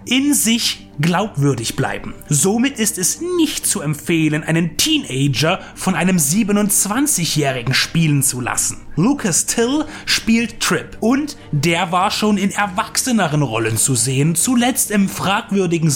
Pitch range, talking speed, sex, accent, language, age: 155-230 Hz, 130 wpm, male, German, German, 30-49